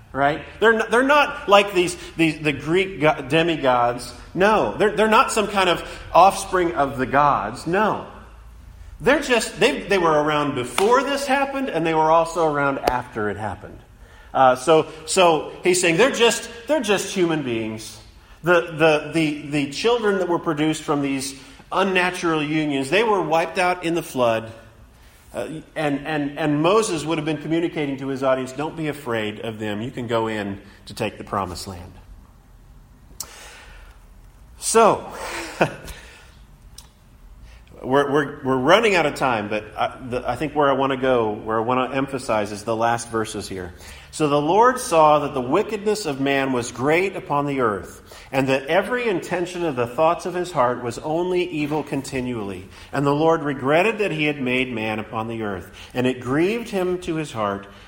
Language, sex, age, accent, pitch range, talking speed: English, male, 40-59, American, 115-165 Hz, 175 wpm